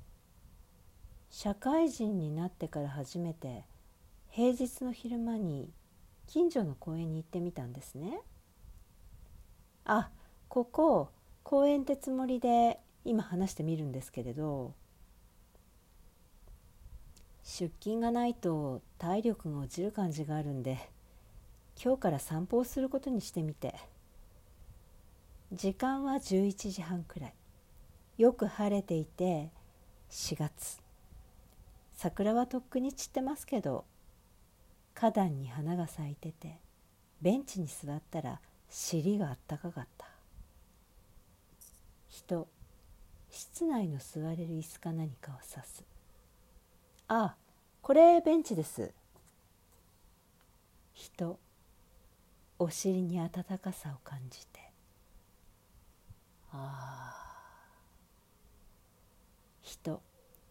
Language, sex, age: Japanese, female, 50-69